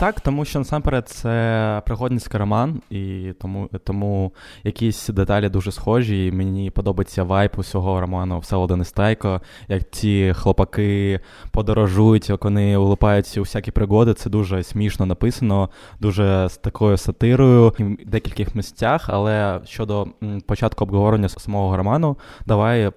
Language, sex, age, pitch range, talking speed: Ukrainian, male, 20-39, 95-110 Hz, 130 wpm